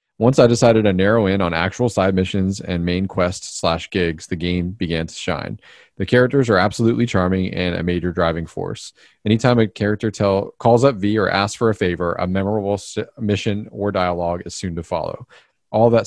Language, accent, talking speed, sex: English, American, 195 wpm, male